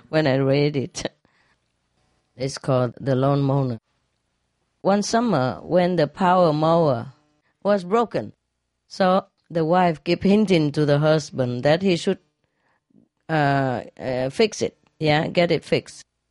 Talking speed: 135 wpm